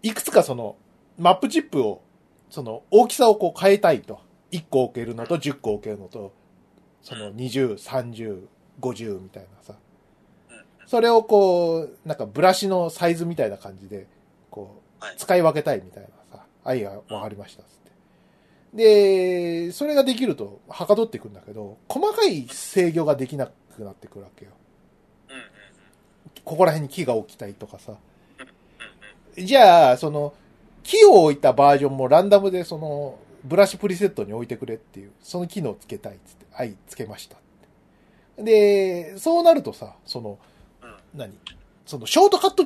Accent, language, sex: native, Japanese, male